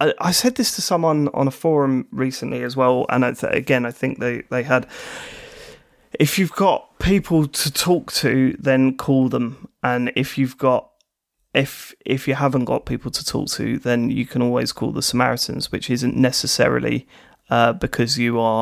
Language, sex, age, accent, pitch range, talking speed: English, male, 30-49, British, 125-140 Hz, 175 wpm